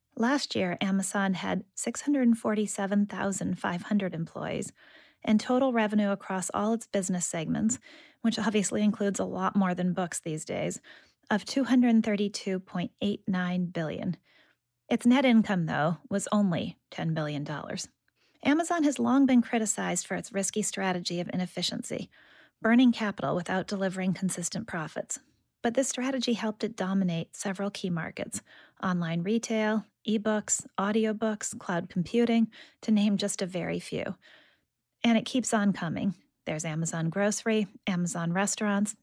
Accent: American